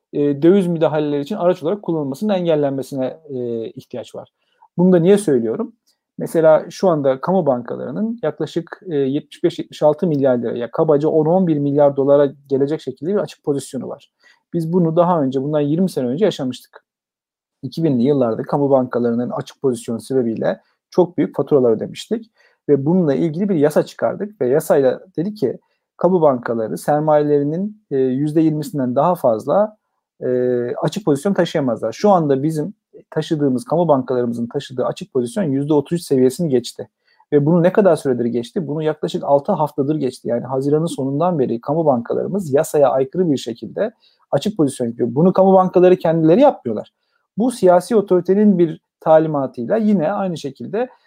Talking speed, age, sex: 145 wpm, 40-59, male